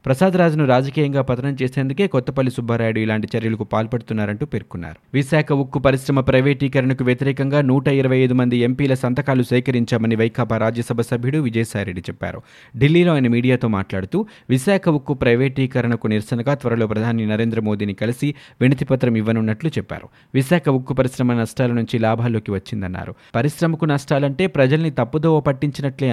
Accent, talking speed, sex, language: native, 120 wpm, male, Telugu